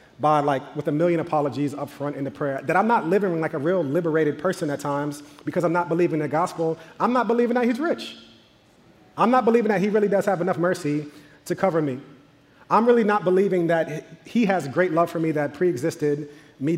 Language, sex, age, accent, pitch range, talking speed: English, male, 30-49, American, 140-170 Hz, 220 wpm